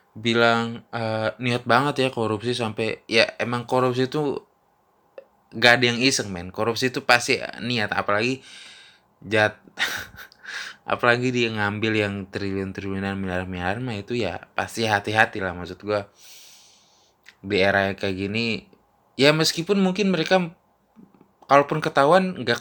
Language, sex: Indonesian, male